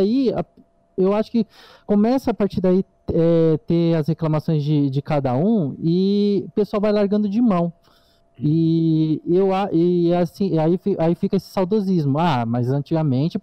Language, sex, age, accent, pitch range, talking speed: Portuguese, male, 20-39, Brazilian, 145-190 Hz, 150 wpm